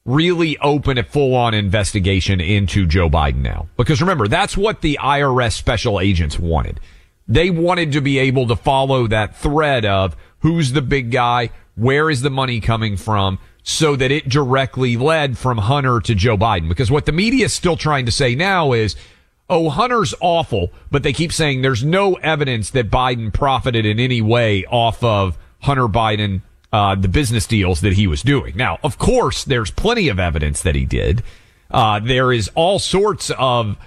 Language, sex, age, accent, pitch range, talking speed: English, male, 40-59, American, 100-140 Hz, 180 wpm